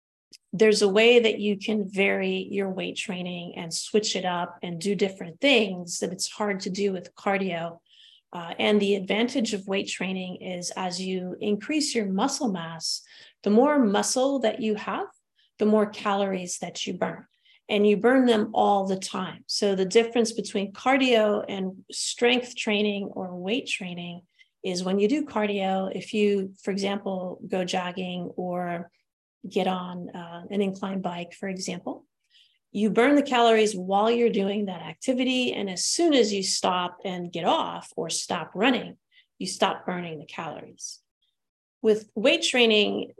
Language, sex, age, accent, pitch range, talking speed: English, female, 30-49, American, 180-225 Hz, 165 wpm